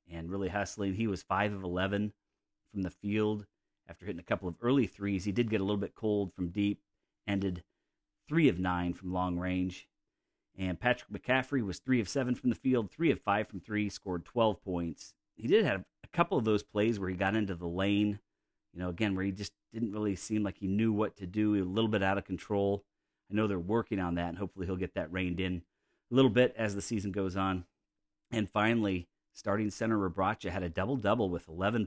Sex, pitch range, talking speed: male, 90-105 Hz, 225 wpm